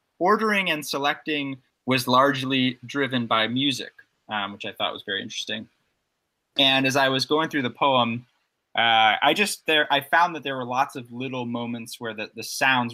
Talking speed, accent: 185 wpm, American